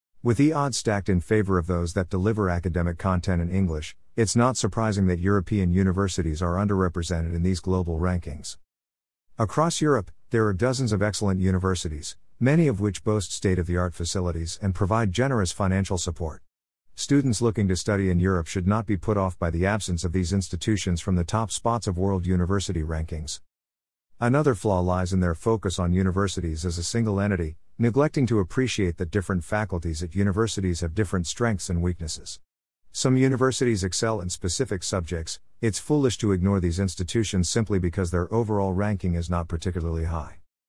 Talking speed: 170 wpm